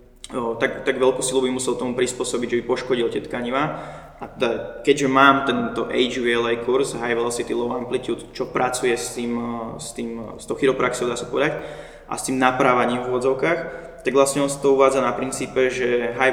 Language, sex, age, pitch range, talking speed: Slovak, male, 20-39, 120-130 Hz, 175 wpm